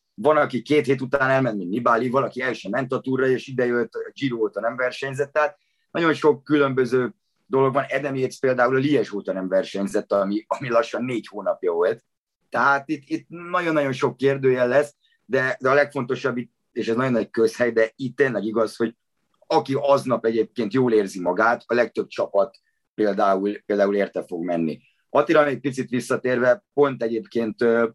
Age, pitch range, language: 30-49, 115-140 Hz, Hungarian